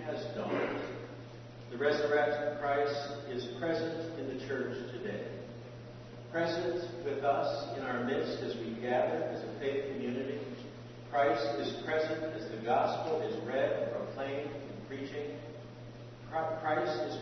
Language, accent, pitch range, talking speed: English, American, 120-155 Hz, 130 wpm